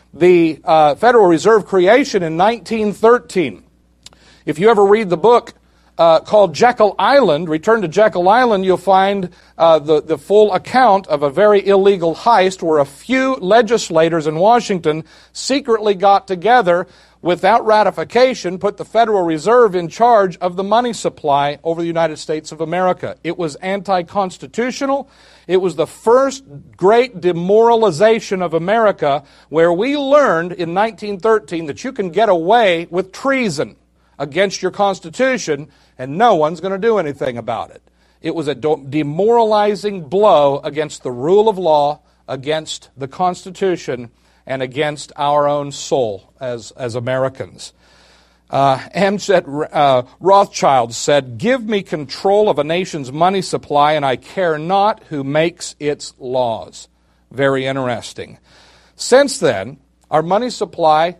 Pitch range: 150-205 Hz